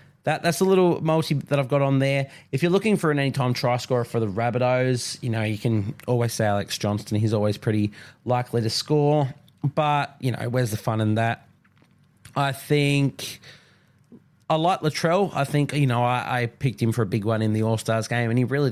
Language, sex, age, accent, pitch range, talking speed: English, male, 20-39, Australian, 110-135 Hz, 215 wpm